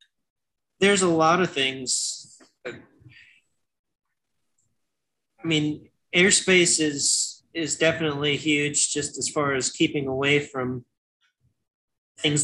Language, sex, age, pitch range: English, male, 30-49, 130-160 Hz